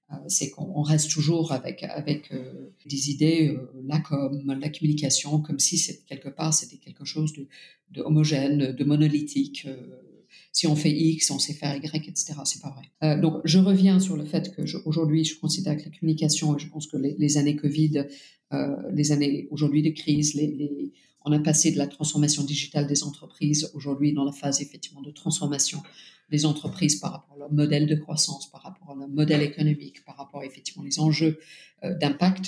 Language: French